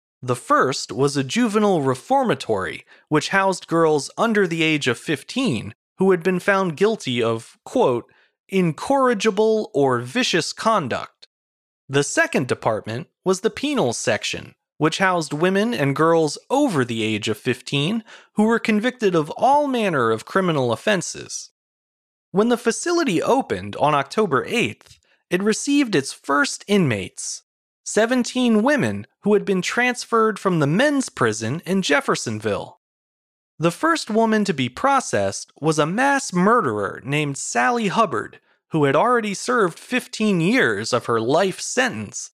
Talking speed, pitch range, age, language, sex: 140 wpm, 145-230 Hz, 30-49, English, male